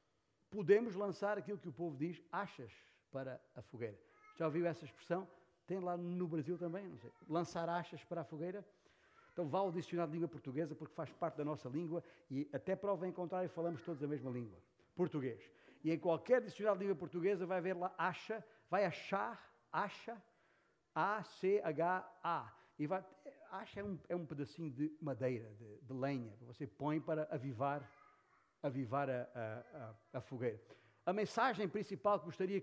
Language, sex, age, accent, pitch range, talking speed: Portuguese, male, 50-69, Brazilian, 150-205 Hz, 170 wpm